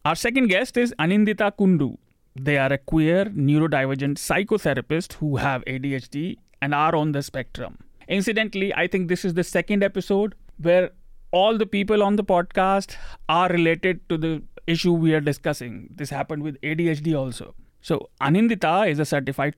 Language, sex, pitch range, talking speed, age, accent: English, male, 140-185 Hz, 160 wpm, 30-49, Indian